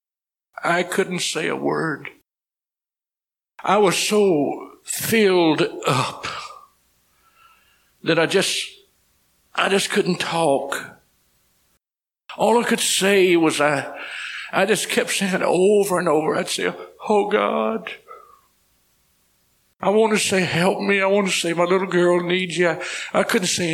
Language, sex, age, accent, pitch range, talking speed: English, male, 60-79, American, 160-210 Hz, 135 wpm